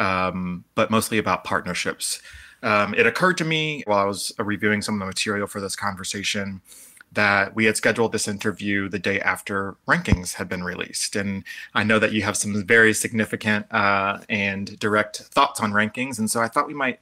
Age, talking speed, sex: 30-49, 195 wpm, male